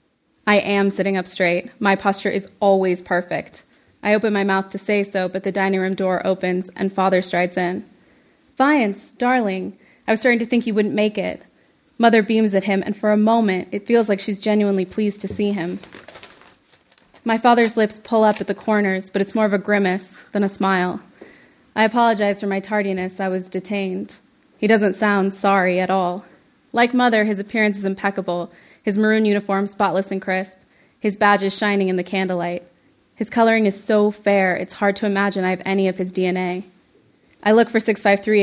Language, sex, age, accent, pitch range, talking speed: English, female, 20-39, American, 190-215 Hz, 190 wpm